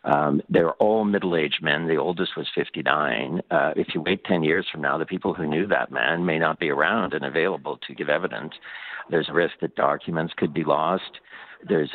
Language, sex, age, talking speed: English, male, 60-79, 210 wpm